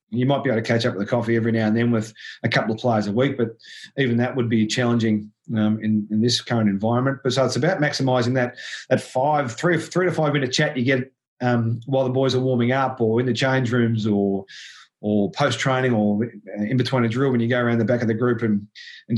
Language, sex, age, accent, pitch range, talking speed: English, male, 30-49, Australian, 115-140 Hz, 255 wpm